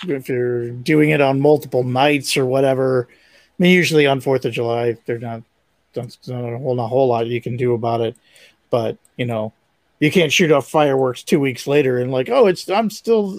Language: English